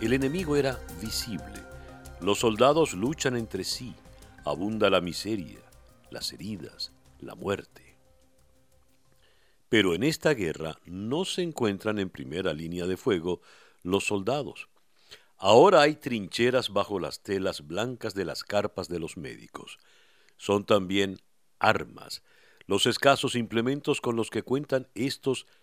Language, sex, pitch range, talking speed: Spanish, male, 90-125 Hz, 125 wpm